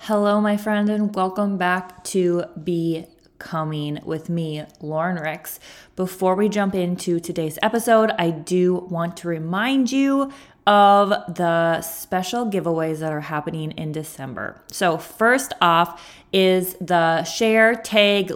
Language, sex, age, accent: English, female, 20-39, American